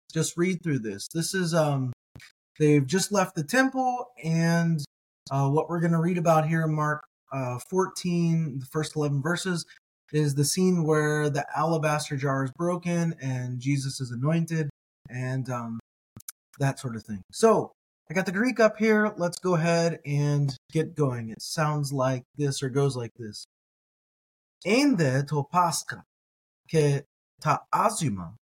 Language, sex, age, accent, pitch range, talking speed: English, male, 20-39, American, 135-175 Hz, 155 wpm